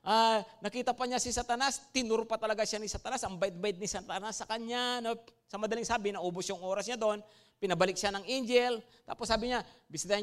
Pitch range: 205-275 Hz